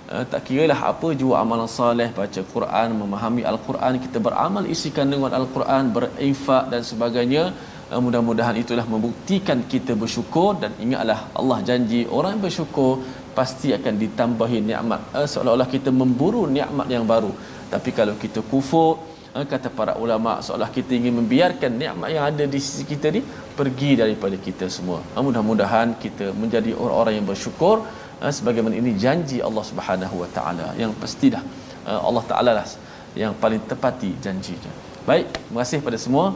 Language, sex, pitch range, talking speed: Malayalam, male, 110-135 Hz, 155 wpm